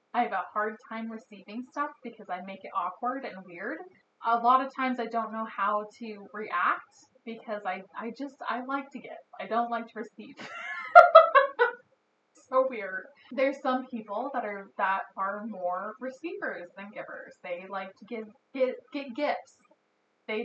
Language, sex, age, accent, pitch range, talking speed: English, female, 20-39, American, 205-255 Hz, 165 wpm